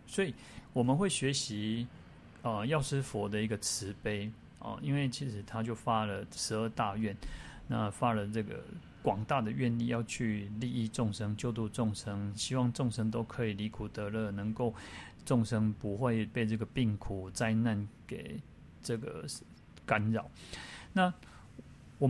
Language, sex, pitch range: Chinese, male, 105-125 Hz